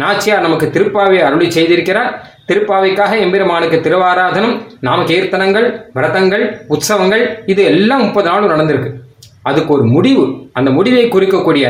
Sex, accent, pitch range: male, native, 150-205 Hz